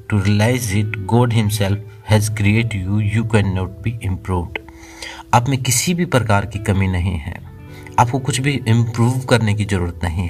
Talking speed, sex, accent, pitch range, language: 170 wpm, male, native, 95-115 Hz, Hindi